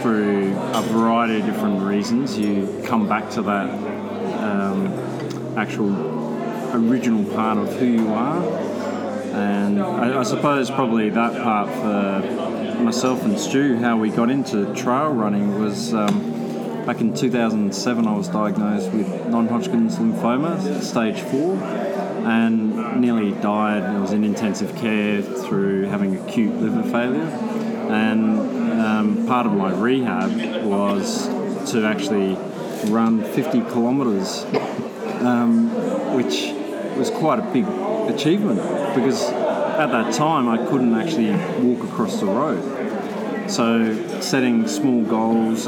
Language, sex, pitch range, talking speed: English, male, 110-135 Hz, 125 wpm